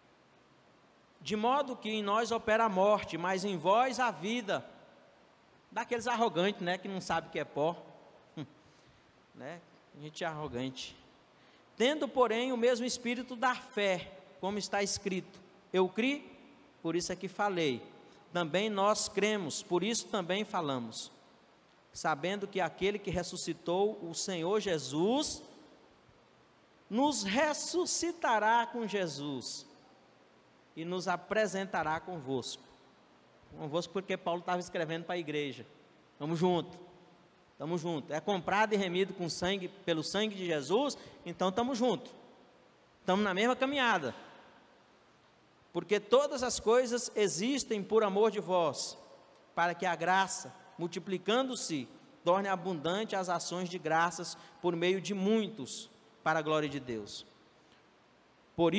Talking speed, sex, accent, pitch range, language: 130 wpm, male, Brazilian, 170-220 Hz, Portuguese